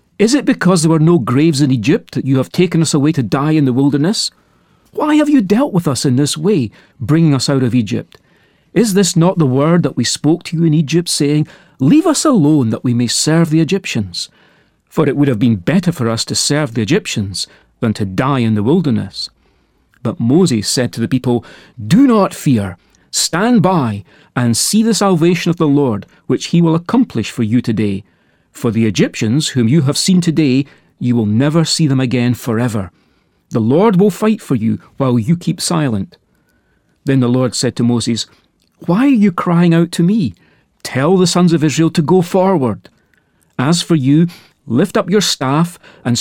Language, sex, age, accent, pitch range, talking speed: English, male, 40-59, British, 125-175 Hz, 200 wpm